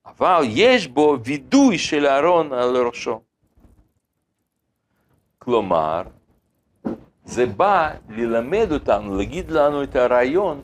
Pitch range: 110-175 Hz